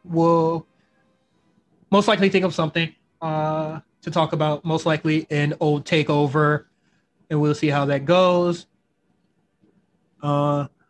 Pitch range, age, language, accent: 145-170 Hz, 20-39, English, American